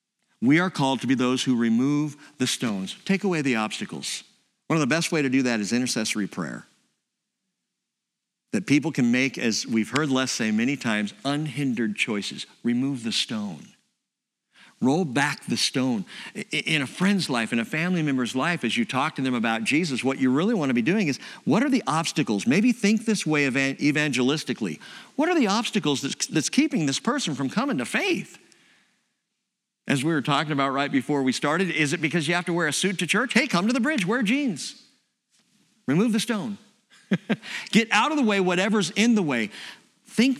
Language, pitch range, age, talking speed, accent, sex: English, 135-220 Hz, 50-69, 195 wpm, American, male